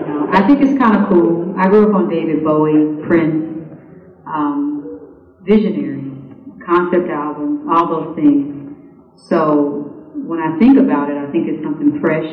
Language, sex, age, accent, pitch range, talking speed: English, female, 40-59, American, 150-190 Hz, 150 wpm